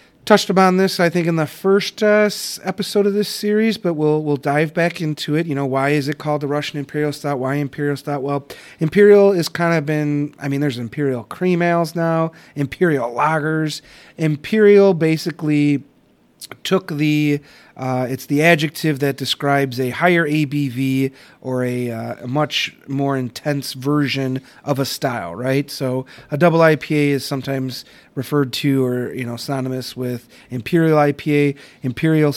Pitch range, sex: 130-155 Hz, male